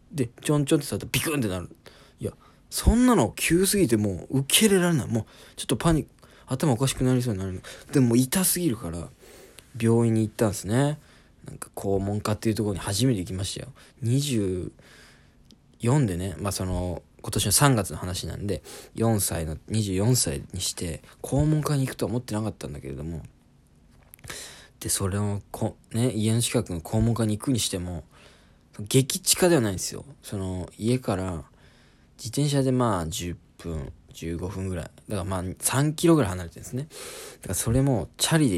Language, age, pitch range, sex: Japanese, 20-39, 95-130 Hz, male